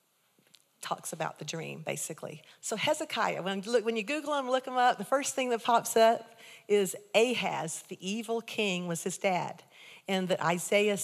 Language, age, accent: English, 50-69, American